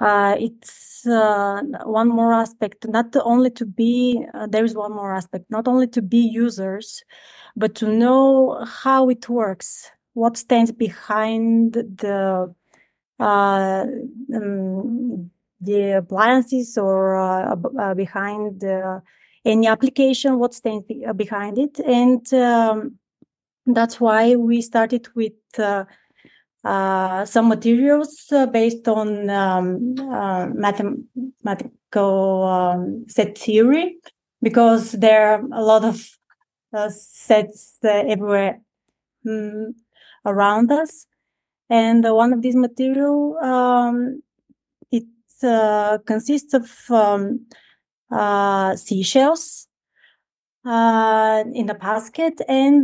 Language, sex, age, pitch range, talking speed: Swedish, female, 30-49, 210-250 Hz, 110 wpm